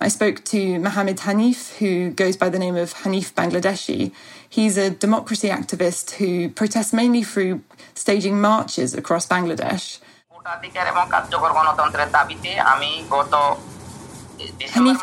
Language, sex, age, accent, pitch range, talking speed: English, female, 20-39, British, 180-205 Hz, 105 wpm